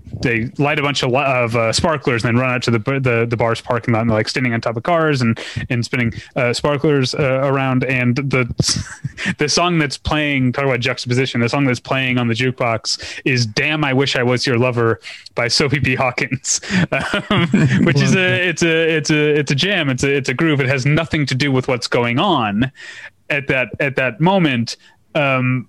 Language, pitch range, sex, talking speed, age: English, 120-145 Hz, male, 215 wpm, 30-49